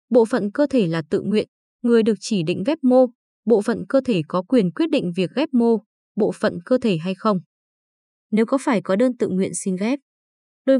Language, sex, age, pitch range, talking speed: Vietnamese, female, 20-39, 195-255 Hz, 220 wpm